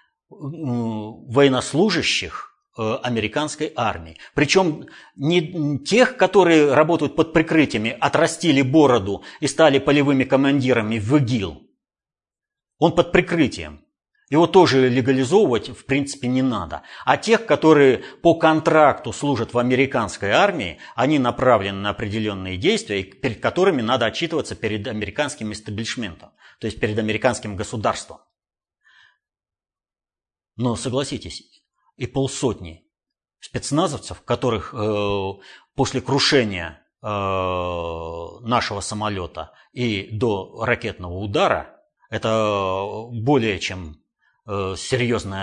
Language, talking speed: Russian, 95 wpm